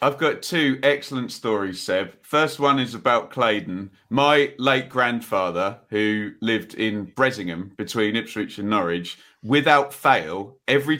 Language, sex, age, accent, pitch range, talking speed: English, male, 30-49, British, 115-150 Hz, 135 wpm